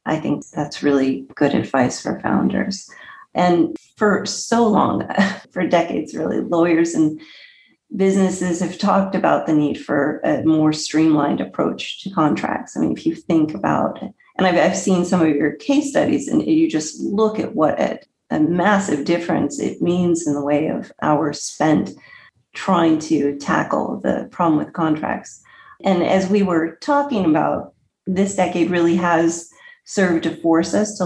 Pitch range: 160-210 Hz